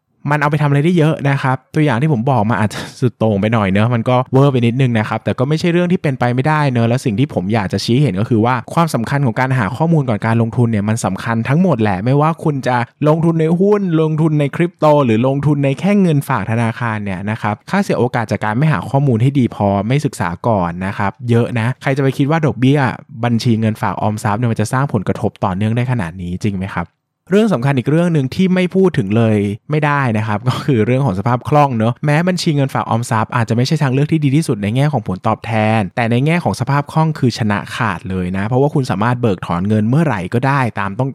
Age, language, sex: 20-39, Thai, male